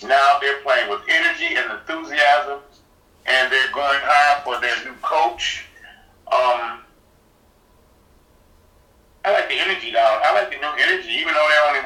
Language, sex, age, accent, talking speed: English, male, 50-69, American, 150 wpm